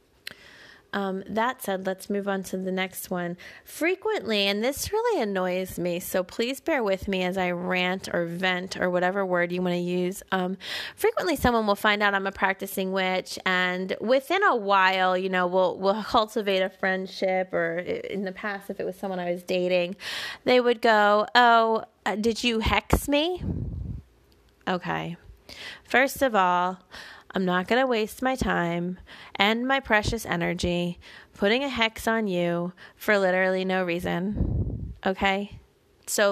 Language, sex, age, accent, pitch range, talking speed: English, female, 20-39, American, 185-235 Hz, 165 wpm